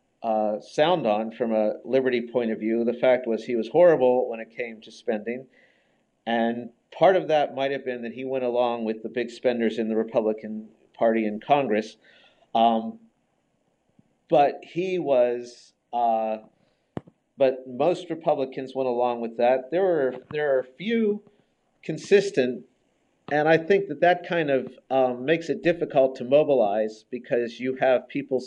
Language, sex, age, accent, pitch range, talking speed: English, male, 50-69, American, 115-155 Hz, 160 wpm